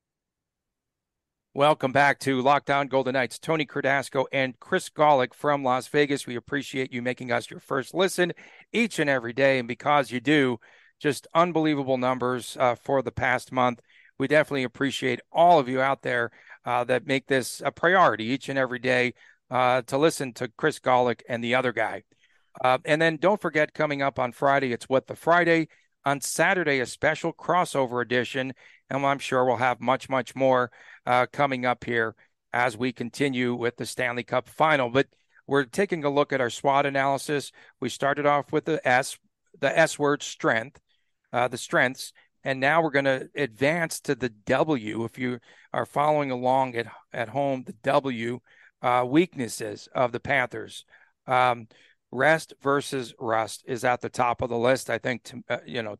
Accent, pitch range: American, 125-145 Hz